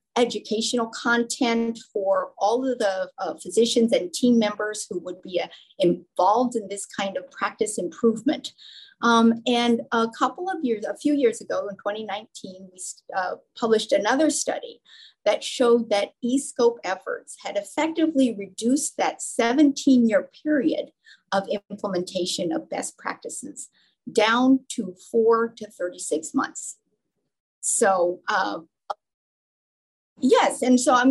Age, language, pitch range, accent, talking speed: 50-69, English, 210-280 Hz, American, 130 wpm